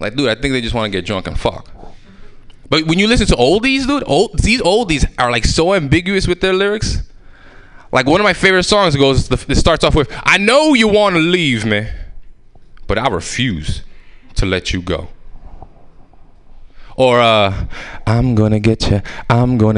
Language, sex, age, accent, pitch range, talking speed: English, male, 20-39, American, 95-130 Hz, 190 wpm